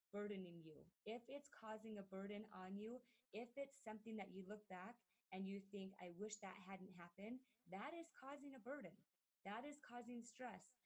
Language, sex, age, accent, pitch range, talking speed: English, female, 30-49, American, 190-230 Hz, 180 wpm